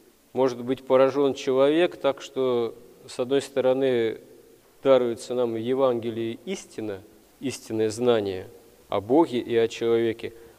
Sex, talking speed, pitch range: male, 120 wpm, 120-155 Hz